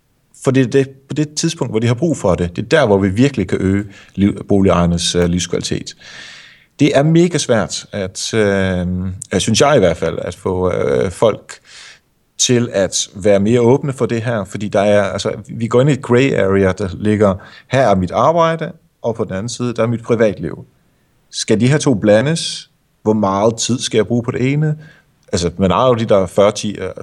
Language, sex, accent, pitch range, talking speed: Danish, male, native, 100-130 Hz, 200 wpm